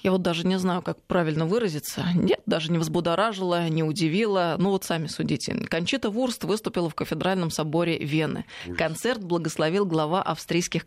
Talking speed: 160 wpm